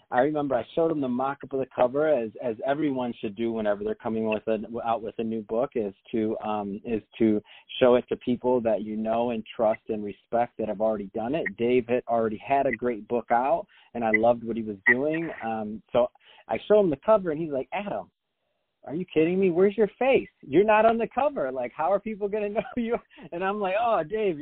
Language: English